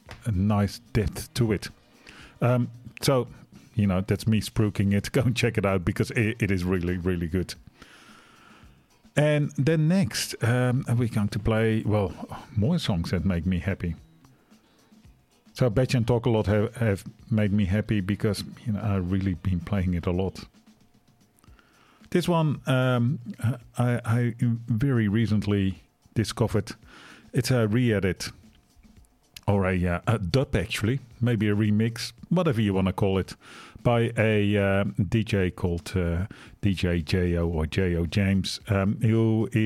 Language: English